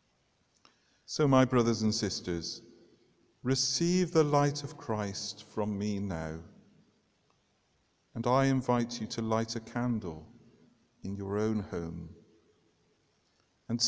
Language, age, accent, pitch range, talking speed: English, 50-69, British, 90-120 Hz, 110 wpm